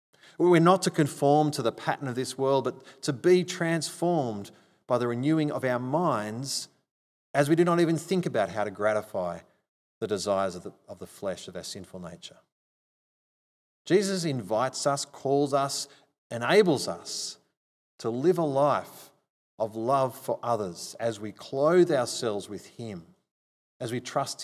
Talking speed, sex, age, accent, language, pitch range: 155 wpm, male, 30-49, Australian, English, 110-150 Hz